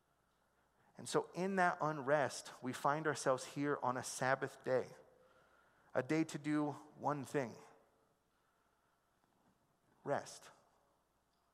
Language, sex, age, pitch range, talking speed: English, male, 40-59, 130-165 Hz, 105 wpm